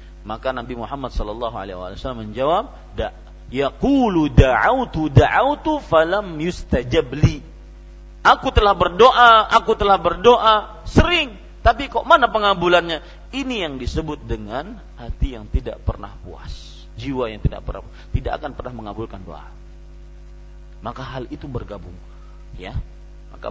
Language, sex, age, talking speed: Malay, male, 40-59, 115 wpm